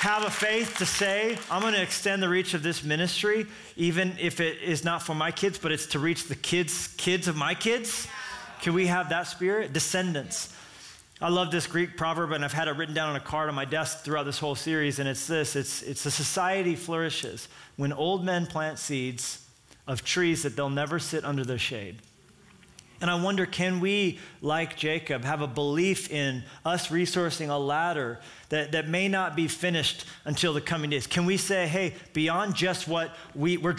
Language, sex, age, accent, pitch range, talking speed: English, male, 30-49, American, 155-190 Hz, 200 wpm